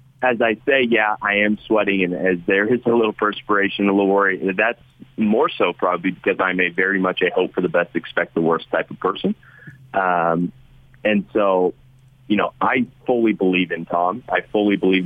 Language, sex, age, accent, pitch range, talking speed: English, male, 30-49, American, 90-130 Hz, 200 wpm